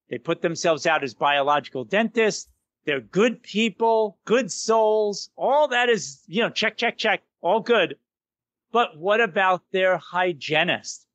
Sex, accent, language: male, American, English